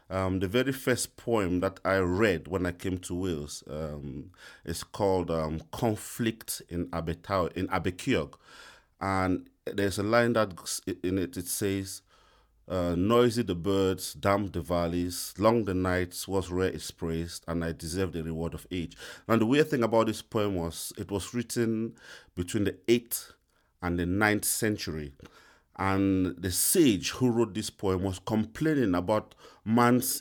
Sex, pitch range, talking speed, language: male, 90-115 Hz, 160 wpm, English